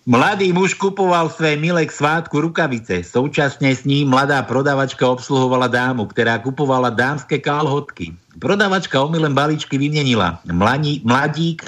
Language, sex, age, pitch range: Slovak, male, 60-79, 130-175 Hz